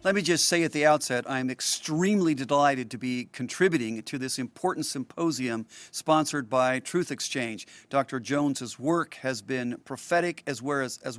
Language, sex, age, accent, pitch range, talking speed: English, male, 50-69, American, 135-170 Hz, 150 wpm